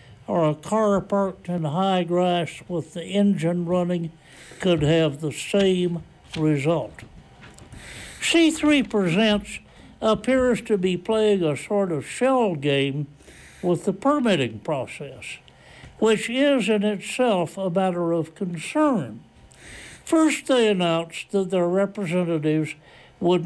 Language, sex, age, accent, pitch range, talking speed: English, male, 60-79, American, 165-205 Hz, 120 wpm